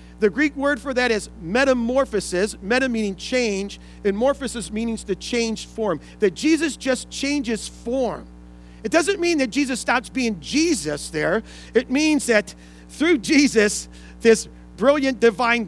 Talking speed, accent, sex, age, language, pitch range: 145 wpm, American, male, 40-59, English, 195-270 Hz